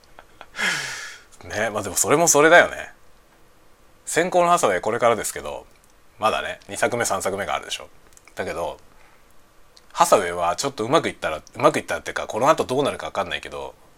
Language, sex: Japanese, male